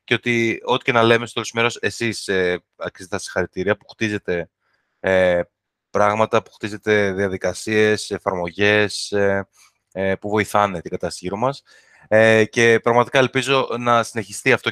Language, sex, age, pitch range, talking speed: Greek, male, 20-39, 100-120 Hz, 140 wpm